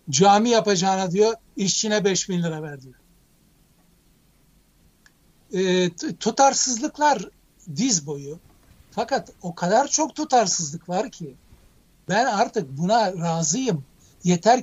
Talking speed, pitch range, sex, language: 105 wpm, 175-225 Hz, male, Turkish